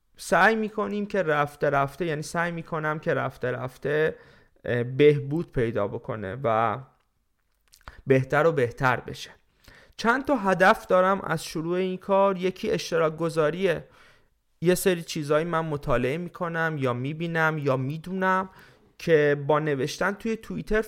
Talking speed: 130 wpm